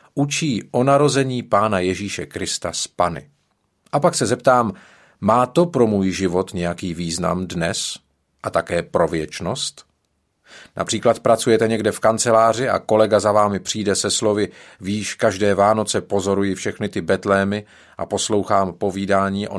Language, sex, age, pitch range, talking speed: Czech, male, 40-59, 95-135 Hz, 145 wpm